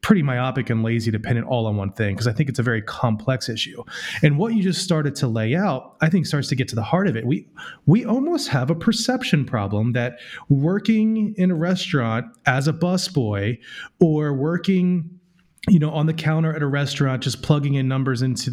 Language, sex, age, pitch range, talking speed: English, male, 30-49, 125-170 Hz, 215 wpm